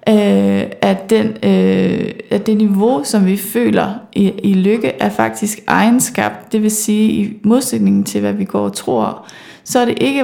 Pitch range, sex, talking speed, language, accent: 195-230 Hz, female, 170 wpm, Danish, native